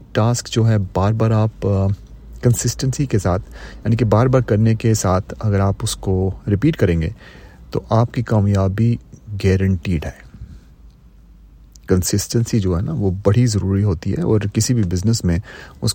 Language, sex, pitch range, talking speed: Urdu, male, 95-125 Hz, 165 wpm